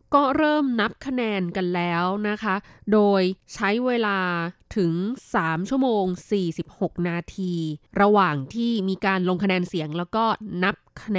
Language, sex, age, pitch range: Thai, female, 20-39, 190-255 Hz